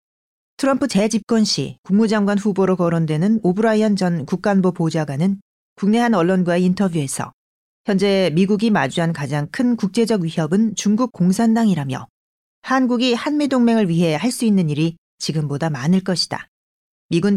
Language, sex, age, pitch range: Korean, female, 40-59, 165-220 Hz